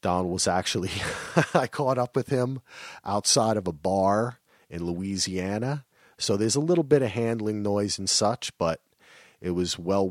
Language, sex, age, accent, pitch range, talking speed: English, male, 40-59, American, 90-115 Hz, 165 wpm